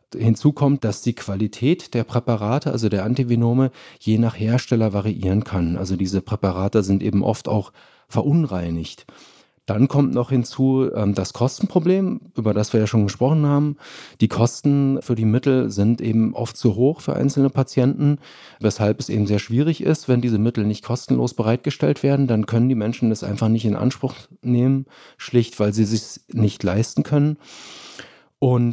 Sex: male